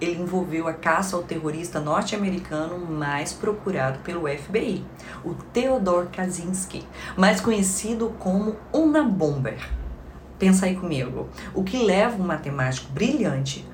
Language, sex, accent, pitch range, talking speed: Portuguese, female, Brazilian, 155-210 Hz, 120 wpm